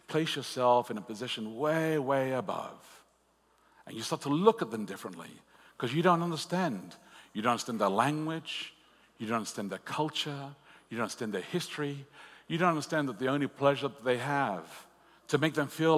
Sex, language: male, English